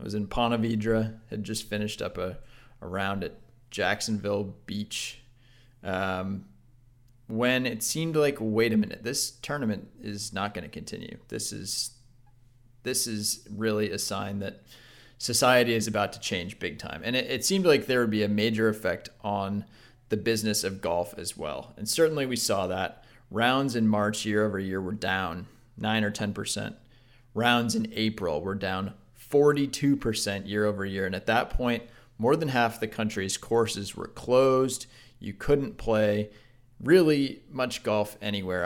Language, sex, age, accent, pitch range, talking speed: English, male, 20-39, American, 105-125 Hz, 165 wpm